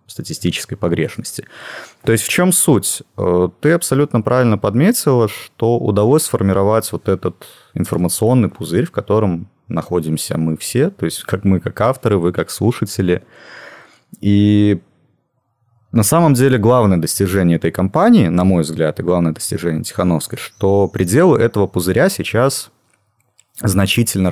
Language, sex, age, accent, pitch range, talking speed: Russian, male, 30-49, native, 90-115 Hz, 130 wpm